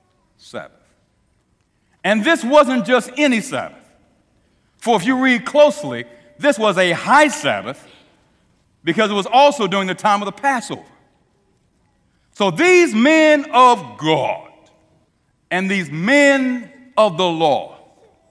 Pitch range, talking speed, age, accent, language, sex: 180-280 Hz, 125 wpm, 60-79, American, English, male